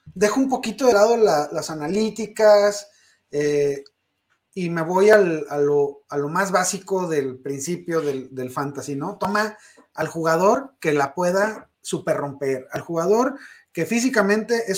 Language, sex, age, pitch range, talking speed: Spanish, male, 30-49, 155-220 Hz, 140 wpm